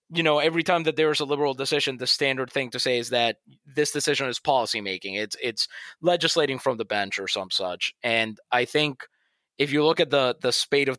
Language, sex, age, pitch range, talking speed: English, male, 20-39, 120-150 Hz, 230 wpm